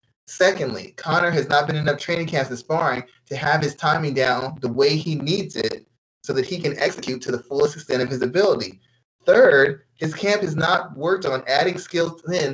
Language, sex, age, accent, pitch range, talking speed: English, male, 30-49, American, 140-185 Hz, 205 wpm